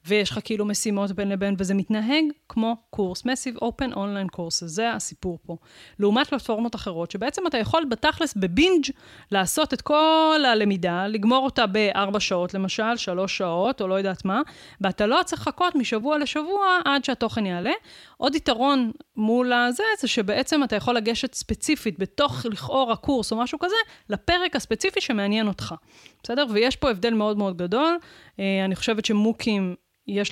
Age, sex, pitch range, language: 20-39, female, 195-245 Hz, Hebrew